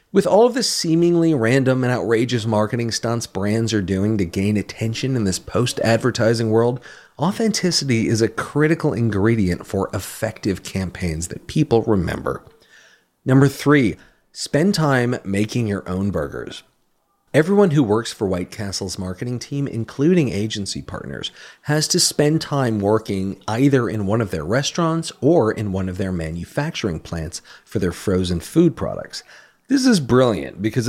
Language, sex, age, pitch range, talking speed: English, male, 40-59, 100-155 Hz, 150 wpm